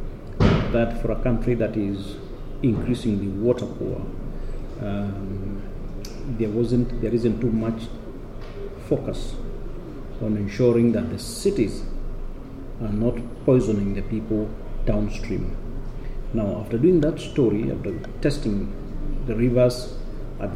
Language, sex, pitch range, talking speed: English, male, 105-125 Hz, 110 wpm